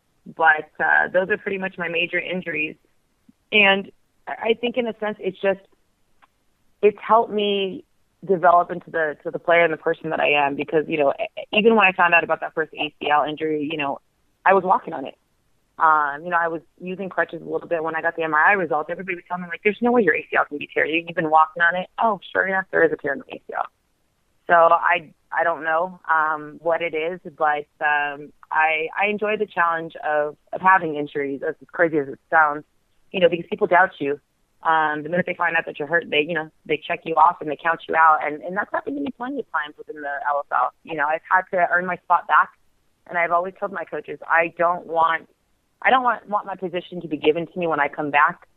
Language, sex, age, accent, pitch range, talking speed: English, female, 30-49, American, 155-185 Hz, 240 wpm